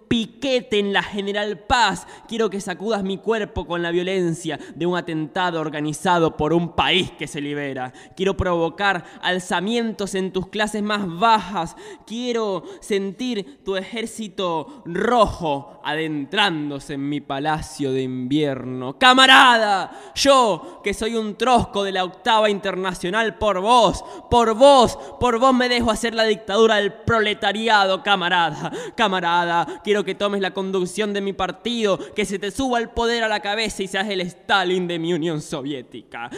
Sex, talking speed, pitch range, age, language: male, 150 wpm, 170-225 Hz, 10-29, Spanish